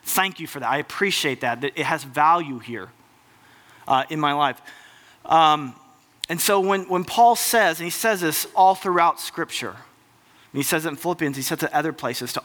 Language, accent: English, American